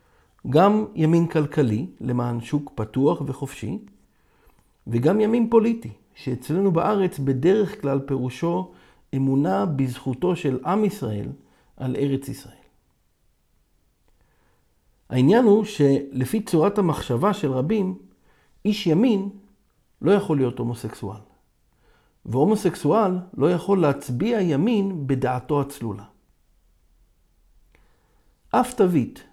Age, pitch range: 50-69, 125-185 Hz